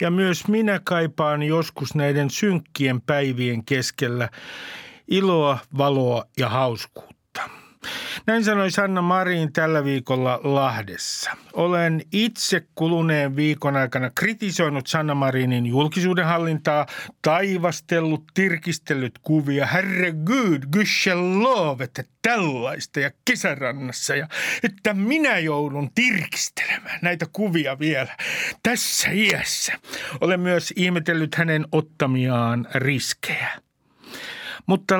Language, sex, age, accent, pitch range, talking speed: Finnish, male, 50-69, native, 140-185 Hz, 100 wpm